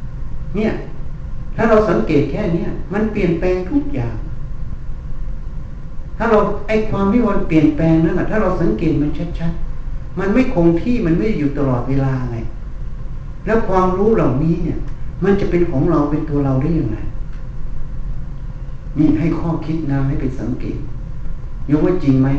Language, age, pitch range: Thai, 60-79, 125-155 Hz